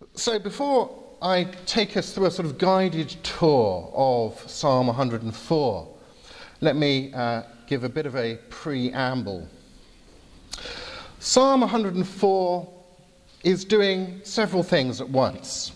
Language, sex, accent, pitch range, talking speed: English, male, British, 125-205 Hz, 120 wpm